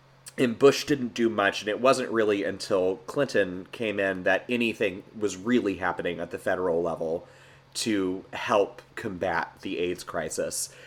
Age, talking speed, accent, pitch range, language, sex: 30-49, 155 wpm, American, 95-130 Hz, English, male